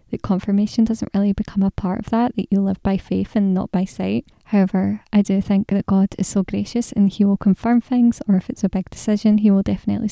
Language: English